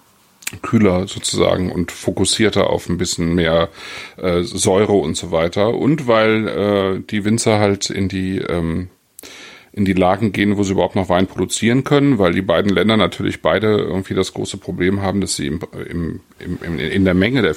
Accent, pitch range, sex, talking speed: German, 90-110 Hz, male, 180 wpm